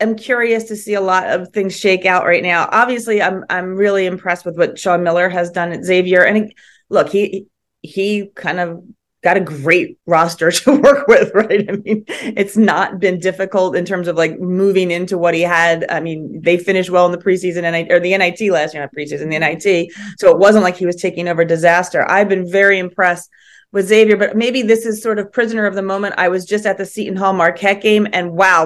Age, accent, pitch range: 30-49, American, 170-195 Hz